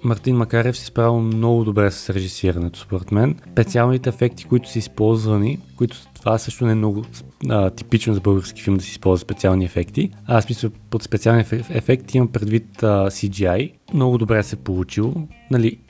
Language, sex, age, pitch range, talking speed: Bulgarian, male, 20-39, 100-125 Hz, 175 wpm